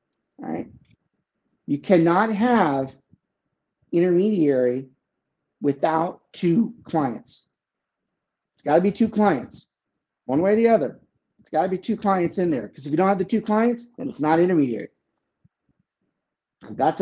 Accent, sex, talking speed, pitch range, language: American, male, 150 wpm, 140-190 Hz, English